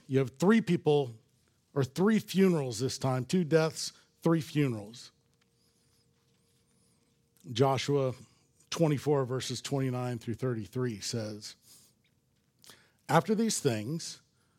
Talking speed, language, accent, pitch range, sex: 95 wpm, English, American, 130-170 Hz, male